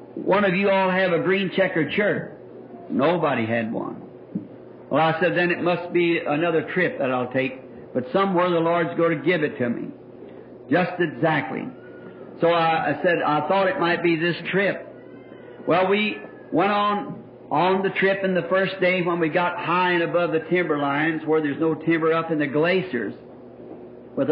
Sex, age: male, 60-79